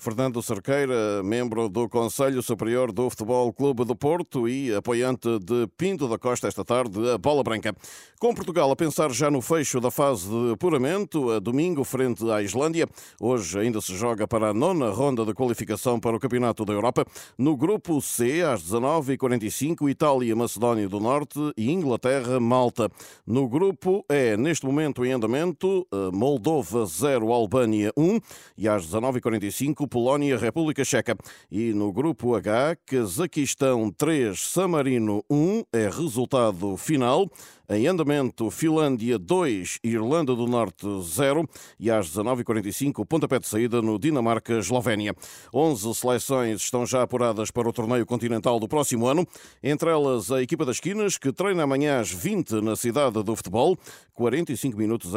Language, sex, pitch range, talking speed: Portuguese, male, 110-140 Hz, 145 wpm